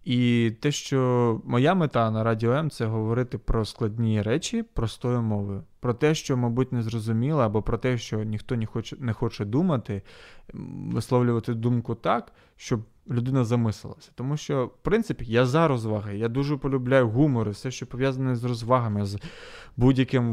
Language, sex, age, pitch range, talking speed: Ukrainian, male, 20-39, 110-130 Hz, 160 wpm